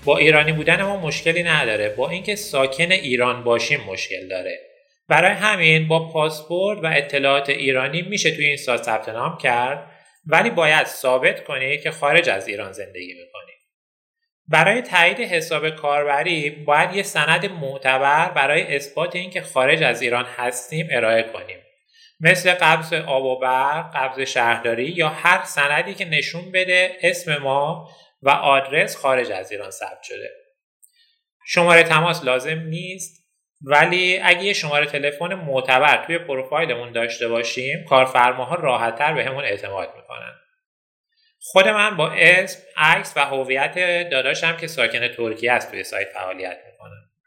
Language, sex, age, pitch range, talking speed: Persian, male, 30-49, 130-180 Hz, 140 wpm